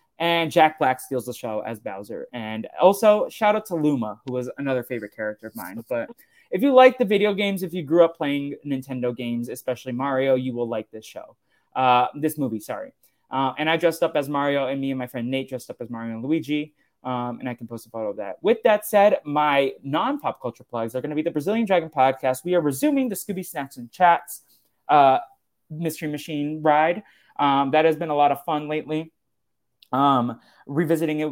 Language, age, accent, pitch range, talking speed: English, 20-39, American, 130-180 Hz, 215 wpm